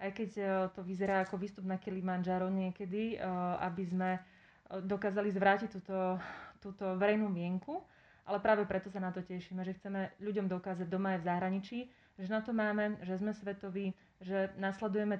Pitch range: 185-200 Hz